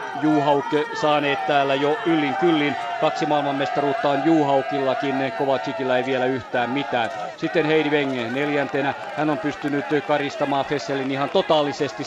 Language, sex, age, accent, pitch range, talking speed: Finnish, male, 40-59, native, 140-155 Hz, 130 wpm